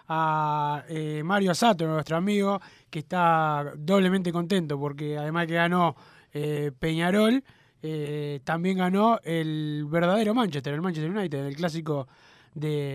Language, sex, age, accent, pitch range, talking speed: Spanish, male, 20-39, Argentinian, 150-185 Hz, 130 wpm